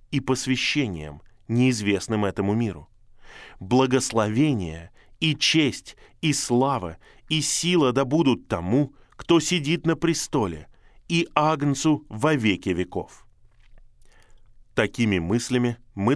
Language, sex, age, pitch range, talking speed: Russian, male, 20-39, 100-135 Hz, 95 wpm